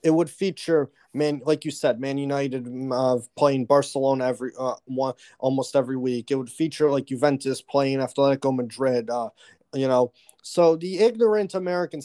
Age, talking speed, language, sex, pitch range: 30-49, 165 wpm, English, male, 130-165 Hz